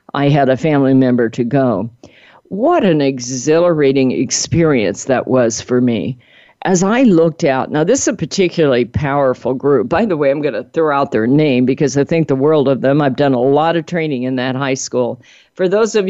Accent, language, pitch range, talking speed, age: American, English, 130-160 Hz, 210 wpm, 50-69